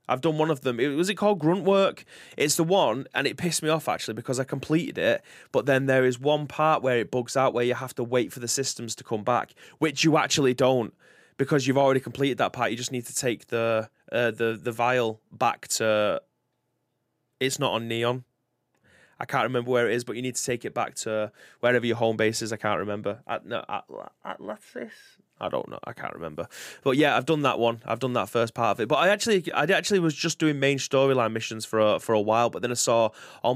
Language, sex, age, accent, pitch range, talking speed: English, male, 20-39, British, 115-140 Hz, 245 wpm